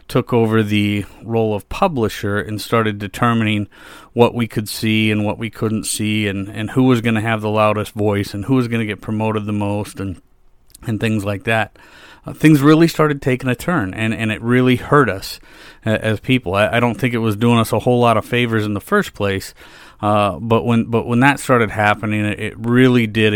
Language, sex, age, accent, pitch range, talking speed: English, male, 40-59, American, 100-115 Hz, 220 wpm